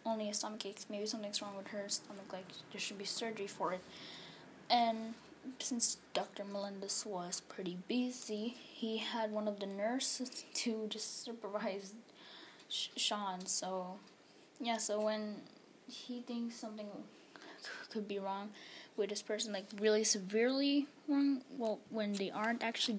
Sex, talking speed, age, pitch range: female, 145 wpm, 10-29, 210-265 Hz